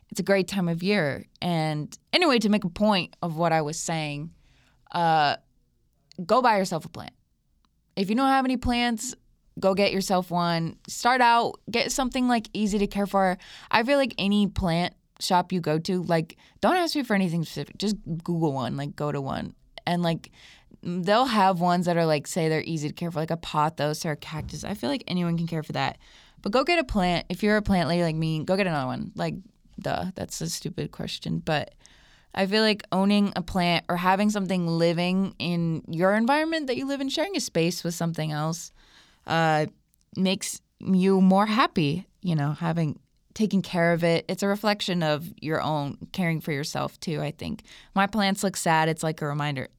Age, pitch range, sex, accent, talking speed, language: 20-39, 160-200 Hz, female, American, 205 wpm, English